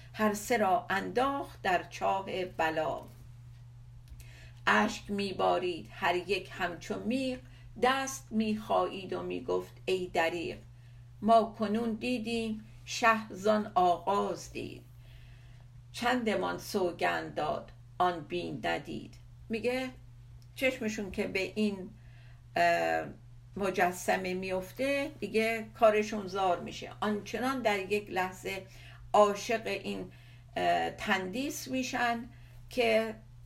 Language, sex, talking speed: Persian, female, 90 wpm